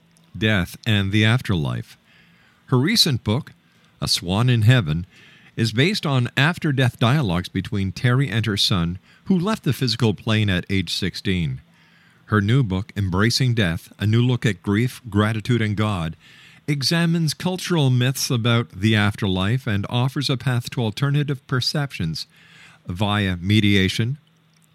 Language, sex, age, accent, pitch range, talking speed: English, male, 50-69, American, 100-135 Hz, 140 wpm